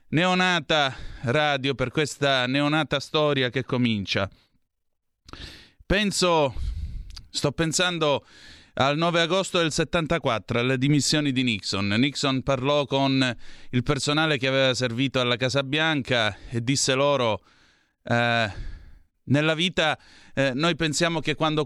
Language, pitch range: Italian, 120-160 Hz